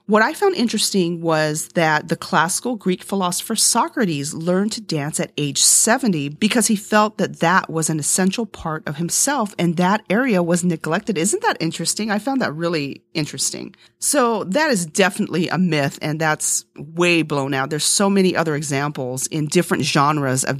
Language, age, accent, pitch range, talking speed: English, 40-59, American, 150-200 Hz, 180 wpm